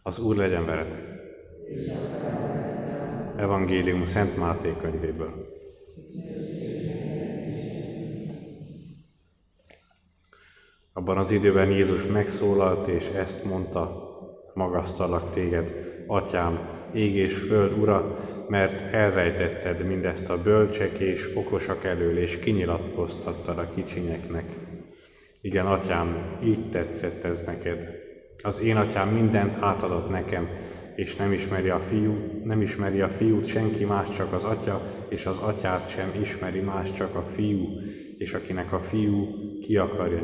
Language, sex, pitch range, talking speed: Hungarian, male, 90-105 Hz, 110 wpm